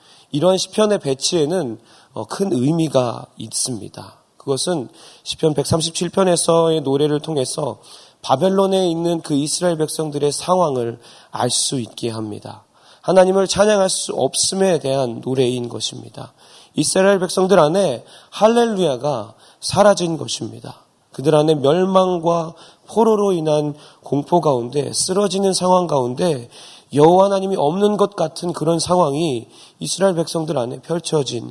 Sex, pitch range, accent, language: male, 140-170 Hz, native, Korean